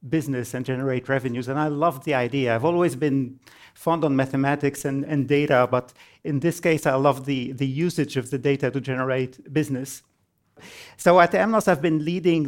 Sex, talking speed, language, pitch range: male, 190 wpm, English, 135-160 Hz